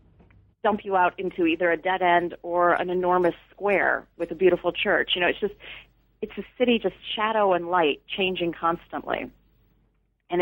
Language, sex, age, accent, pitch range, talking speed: English, female, 30-49, American, 165-200 Hz, 175 wpm